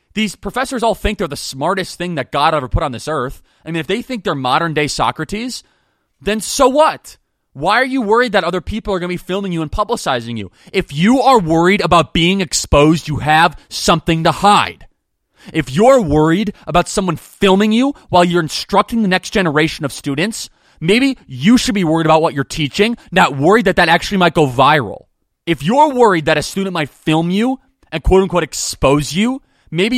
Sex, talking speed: male, 200 wpm